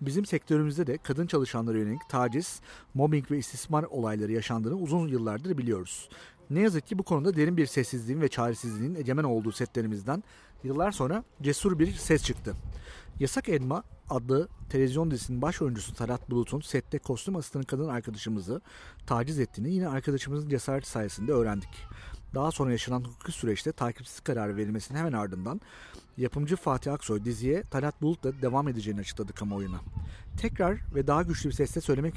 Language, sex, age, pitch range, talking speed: Turkish, male, 40-59, 115-150 Hz, 155 wpm